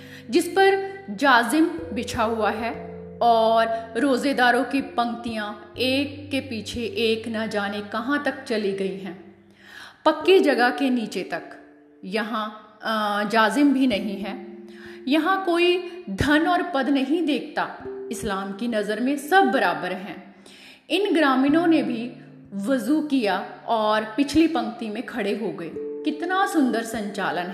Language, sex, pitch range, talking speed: Hindi, female, 205-270 Hz, 135 wpm